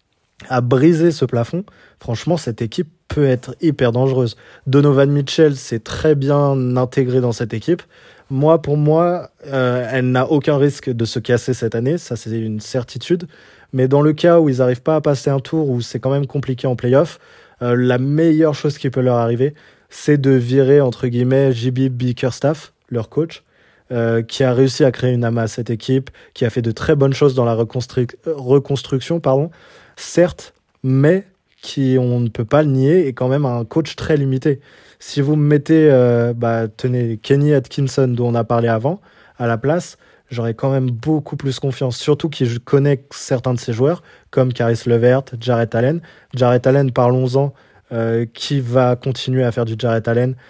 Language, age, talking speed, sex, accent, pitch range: French, 20-39, 190 wpm, male, French, 120-145 Hz